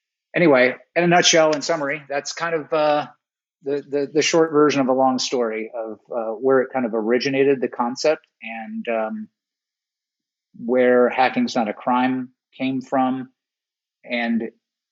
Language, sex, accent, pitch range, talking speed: English, male, American, 115-135 Hz, 155 wpm